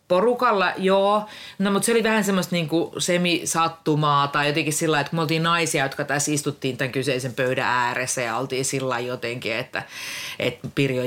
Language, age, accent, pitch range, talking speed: Finnish, 30-49, native, 130-175 Hz, 165 wpm